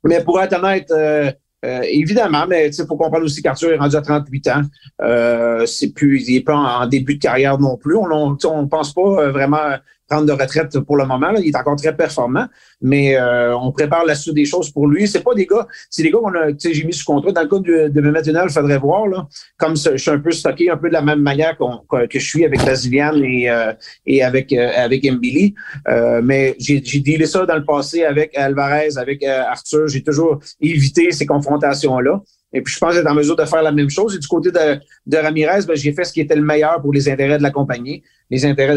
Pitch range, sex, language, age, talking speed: 135-160 Hz, male, French, 40-59, 250 wpm